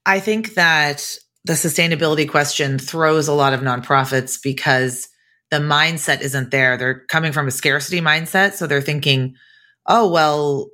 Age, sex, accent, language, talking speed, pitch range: 30-49, female, American, English, 150 wpm, 135-165 Hz